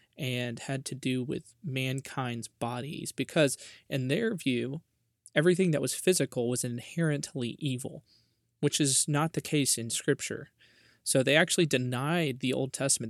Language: English